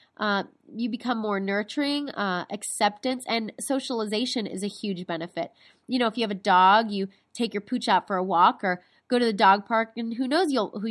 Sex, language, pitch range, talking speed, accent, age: female, English, 190-240 Hz, 210 wpm, American, 20-39